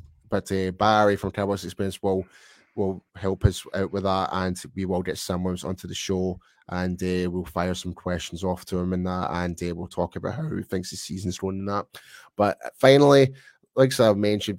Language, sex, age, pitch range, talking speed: English, male, 20-39, 95-110 Hz, 200 wpm